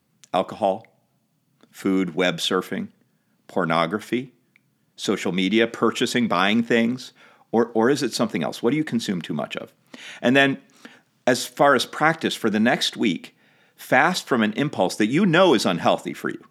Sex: male